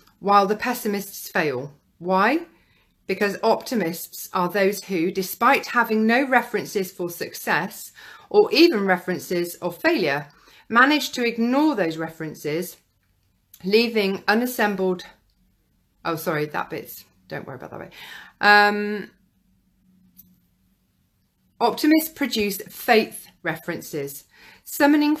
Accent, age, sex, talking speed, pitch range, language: British, 40-59, female, 100 wpm, 165-225 Hz, English